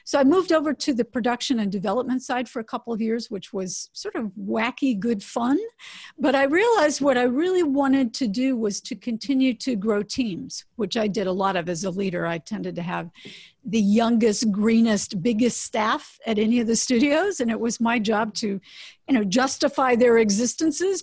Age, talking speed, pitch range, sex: 50-69, 205 wpm, 220-285 Hz, female